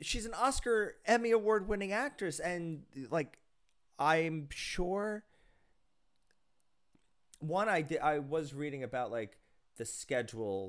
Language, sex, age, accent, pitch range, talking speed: English, male, 30-49, American, 120-160 Hz, 120 wpm